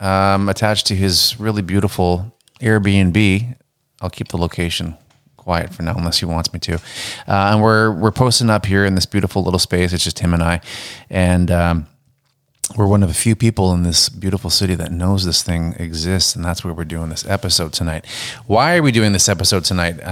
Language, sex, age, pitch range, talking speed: English, male, 30-49, 90-120 Hz, 205 wpm